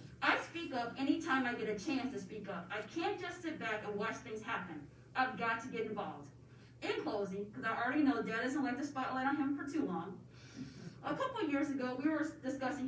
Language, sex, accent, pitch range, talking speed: English, female, American, 225-300 Hz, 230 wpm